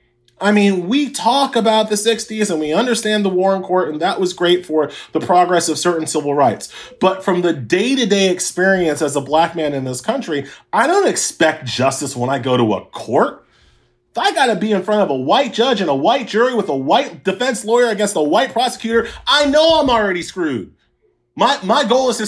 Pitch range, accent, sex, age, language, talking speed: 155-210 Hz, American, male, 30-49, English, 220 wpm